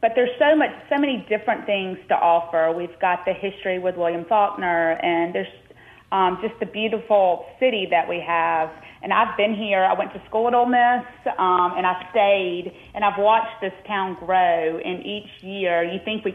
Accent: American